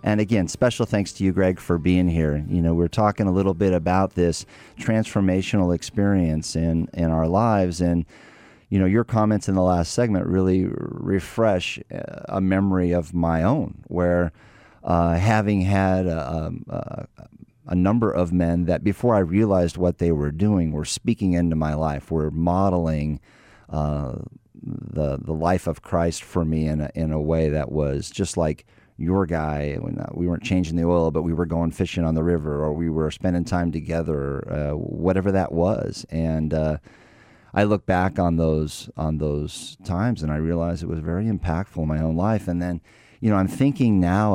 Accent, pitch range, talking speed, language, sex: American, 80-95 Hz, 185 wpm, English, male